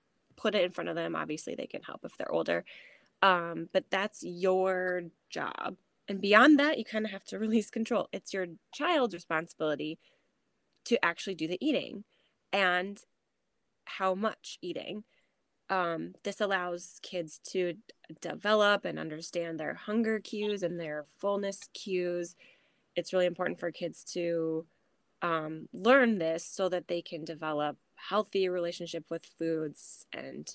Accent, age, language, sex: American, 20-39, English, female